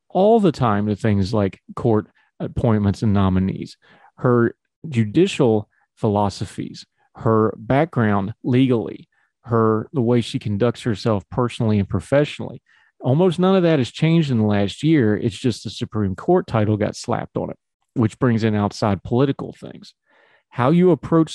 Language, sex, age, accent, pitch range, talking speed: English, male, 40-59, American, 105-140 Hz, 150 wpm